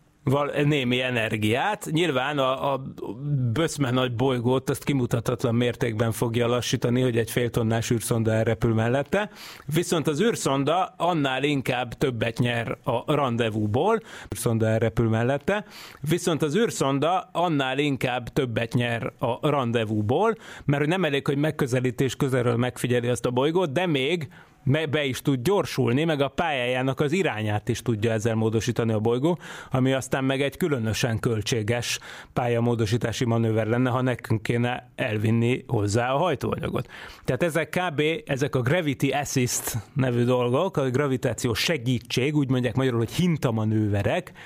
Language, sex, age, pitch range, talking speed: Hungarian, male, 30-49, 120-145 Hz, 140 wpm